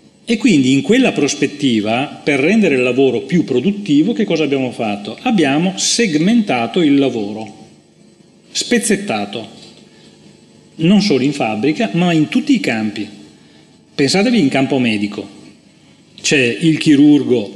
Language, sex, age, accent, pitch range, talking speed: Italian, male, 40-59, native, 120-200 Hz, 125 wpm